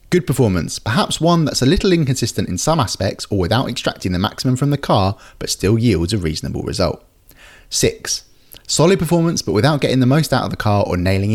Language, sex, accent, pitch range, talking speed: English, male, British, 95-140 Hz, 205 wpm